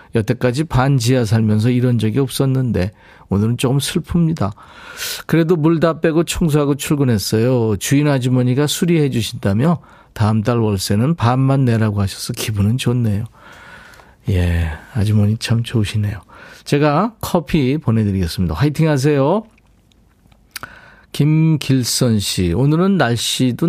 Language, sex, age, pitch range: Korean, male, 40-59, 105-150 Hz